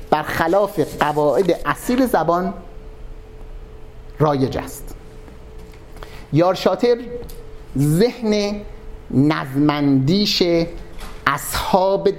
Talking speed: 55 wpm